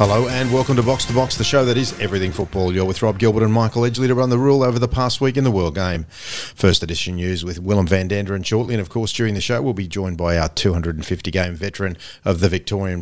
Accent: Australian